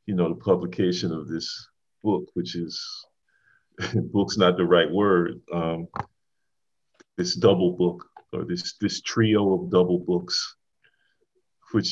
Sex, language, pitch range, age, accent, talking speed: male, English, 85-95 Hz, 40-59, American, 130 wpm